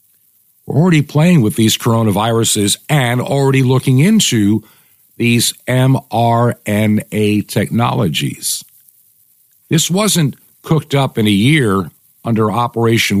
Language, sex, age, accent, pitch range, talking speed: English, male, 50-69, American, 110-150 Hz, 100 wpm